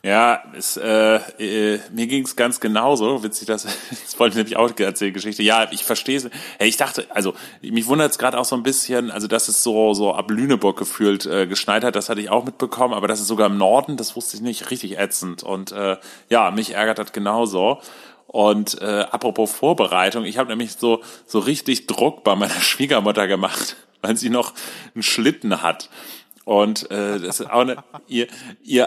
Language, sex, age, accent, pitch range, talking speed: German, male, 30-49, German, 105-125 Hz, 195 wpm